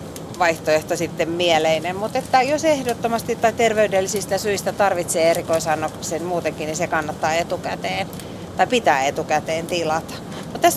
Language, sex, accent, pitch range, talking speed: Finnish, female, native, 160-195 Hz, 125 wpm